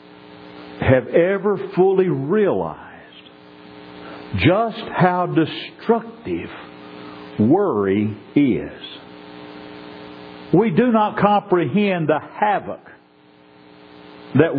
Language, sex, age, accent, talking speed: English, male, 50-69, American, 65 wpm